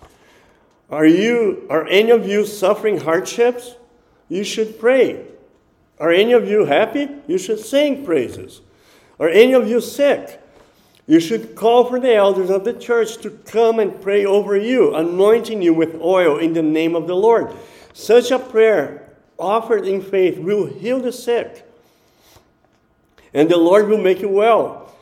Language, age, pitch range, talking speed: English, 50-69, 165-230 Hz, 160 wpm